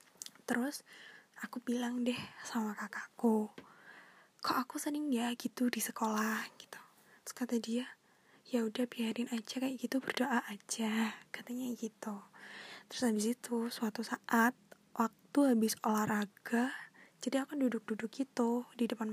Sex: female